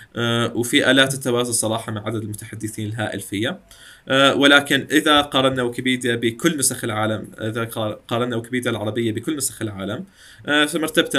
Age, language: 20-39, Arabic